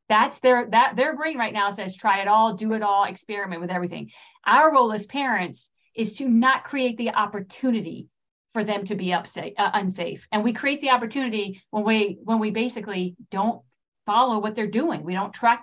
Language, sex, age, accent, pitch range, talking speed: English, female, 40-59, American, 195-260 Hz, 200 wpm